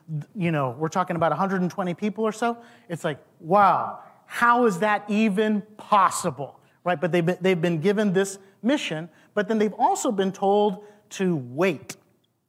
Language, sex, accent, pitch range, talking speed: English, male, American, 170-240 Hz, 165 wpm